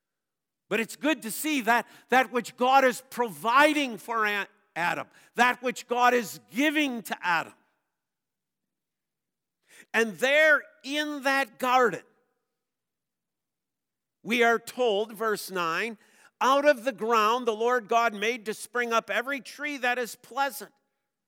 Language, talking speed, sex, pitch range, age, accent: English, 130 wpm, male, 225-270 Hz, 50-69, American